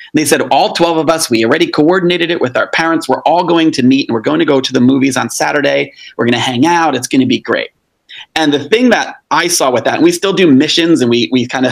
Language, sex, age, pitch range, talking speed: English, male, 30-49, 125-165 Hz, 285 wpm